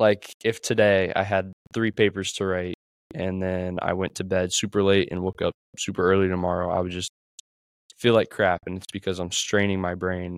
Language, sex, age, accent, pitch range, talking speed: English, male, 10-29, American, 90-100 Hz, 210 wpm